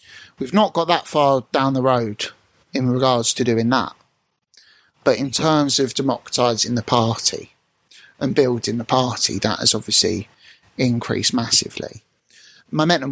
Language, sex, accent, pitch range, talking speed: English, male, British, 115-135 Hz, 135 wpm